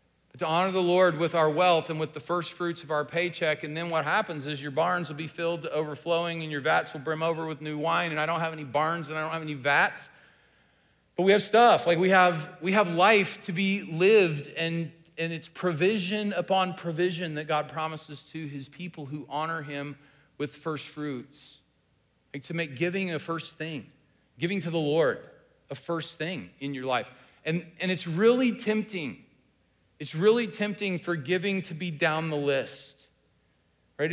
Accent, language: American, English